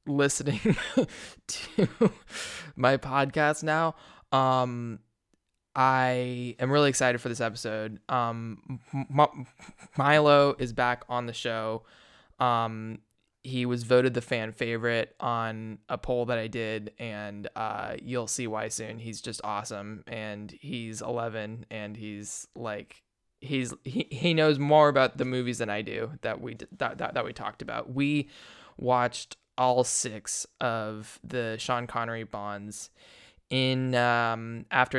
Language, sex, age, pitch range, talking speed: English, male, 20-39, 115-130 Hz, 140 wpm